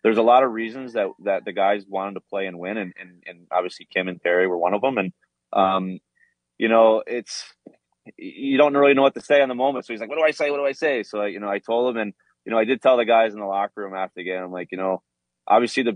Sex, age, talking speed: male, 20-39, 295 wpm